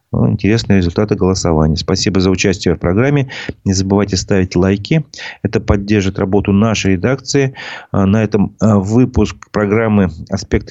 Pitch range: 90-105 Hz